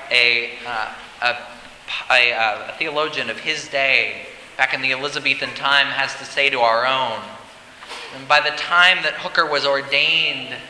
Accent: American